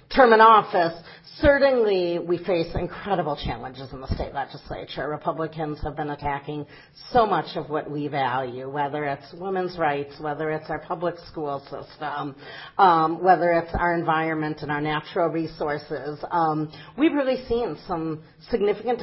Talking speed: 150 wpm